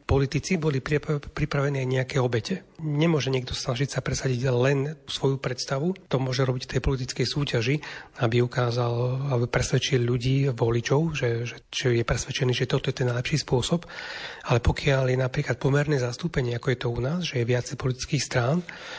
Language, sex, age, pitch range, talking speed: Slovak, male, 40-59, 130-150 Hz, 175 wpm